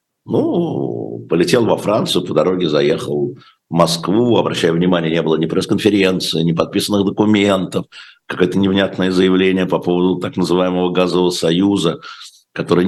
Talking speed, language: 130 wpm, Russian